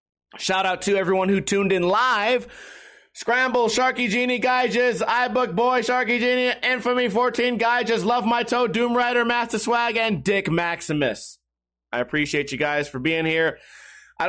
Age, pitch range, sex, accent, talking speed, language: 30-49, 160-230 Hz, male, American, 150 wpm, English